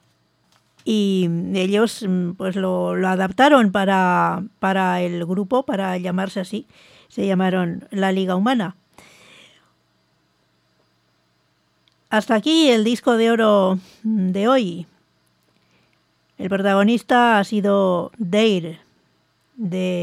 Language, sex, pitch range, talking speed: English, female, 180-215 Hz, 95 wpm